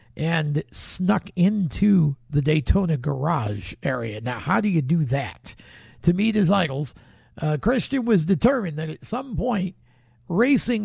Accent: American